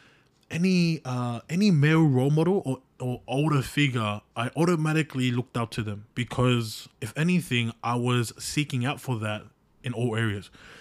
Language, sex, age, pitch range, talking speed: English, male, 20-39, 110-135 Hz, 155 wpm